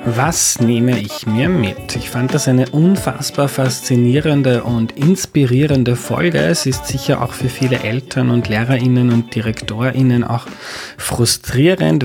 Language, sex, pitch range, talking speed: German, male, 120-135 Hz, 135 wpm